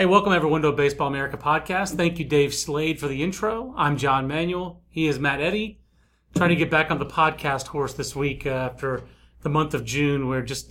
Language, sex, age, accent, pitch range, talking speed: English, male, 30-49, American, 135-185 Hz, 230 wpm